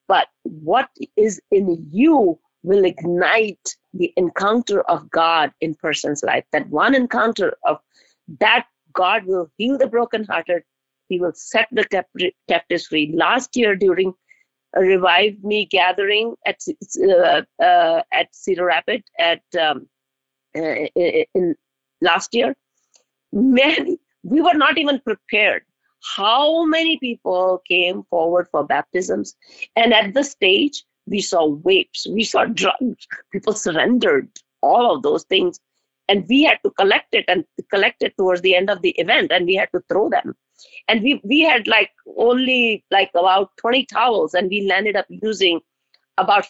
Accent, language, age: Indian, English, 50-69